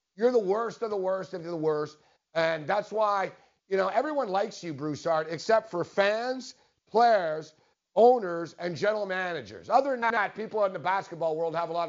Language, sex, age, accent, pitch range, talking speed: English, male, 50-69, American, 175-240 Hz, 190 wpm